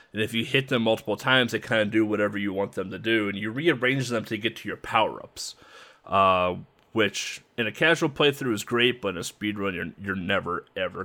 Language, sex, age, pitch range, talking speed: English, male, 30-49, 100-125 Hz, 230 wpm